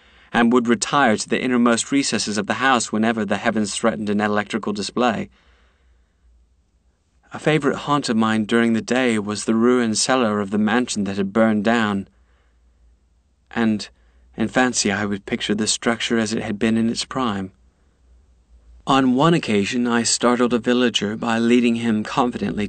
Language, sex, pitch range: English, male, 75-115 Hz